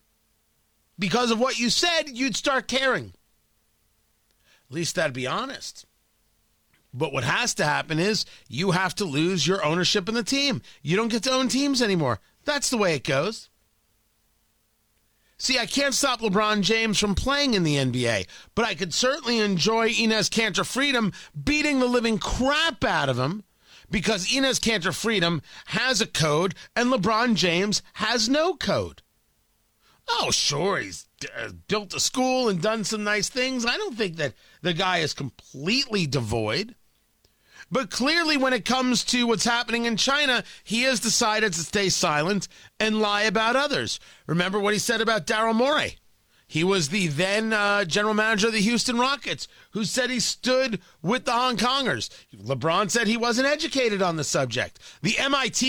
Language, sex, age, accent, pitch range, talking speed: English, male, 40-59, American, 185-250 Hz, 170 wpm